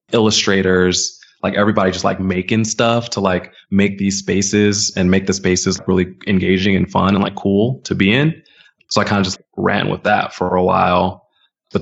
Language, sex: English, male